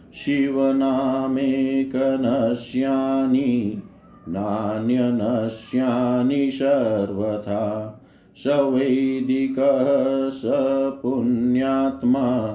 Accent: native